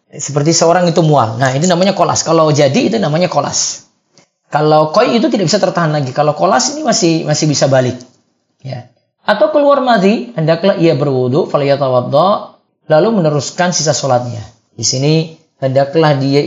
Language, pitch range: Indonesian, 135-185 Hz